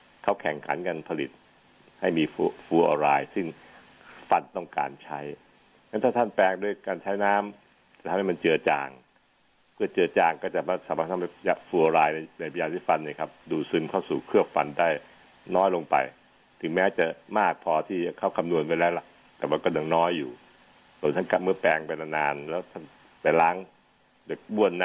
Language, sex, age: Thai, male, 60-79